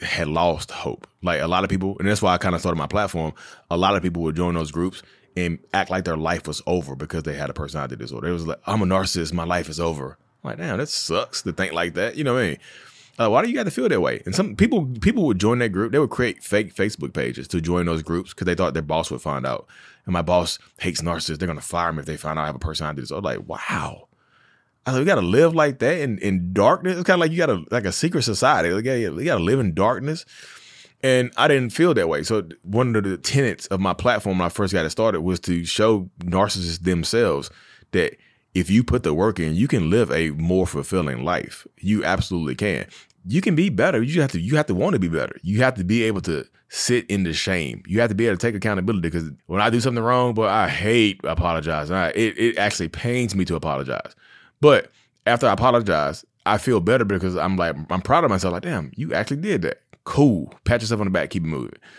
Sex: male